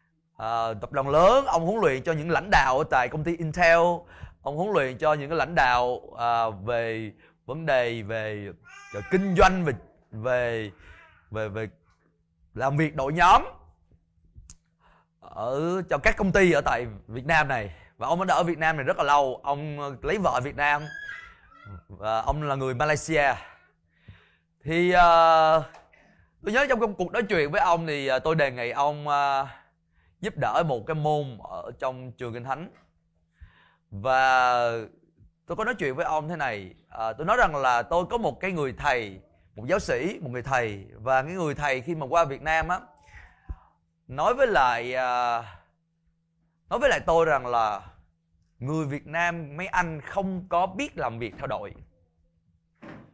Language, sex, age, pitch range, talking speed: Vietnamese, male, 20-39, 100-165 Hz, 170 wpm